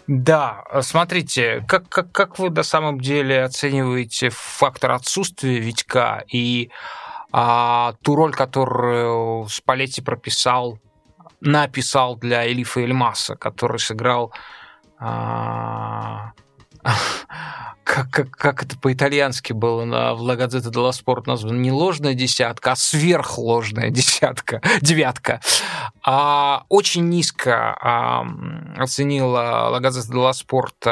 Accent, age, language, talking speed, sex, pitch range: native, 20-39, Russian, 100 wpm, male, 120-140 Hz